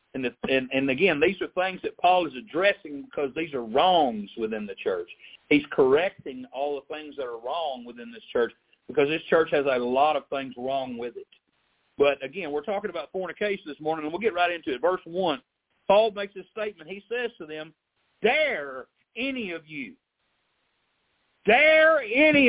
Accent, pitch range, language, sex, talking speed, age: American, 155-255 Hz, English, male, 185 wpm, 50-69